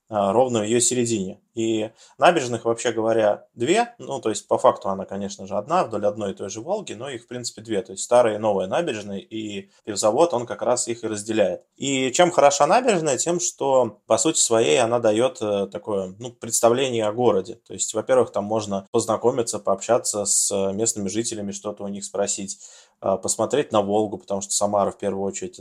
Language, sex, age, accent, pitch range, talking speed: Russian, male, 20-39, native, 100-120 Hz, 190 wpm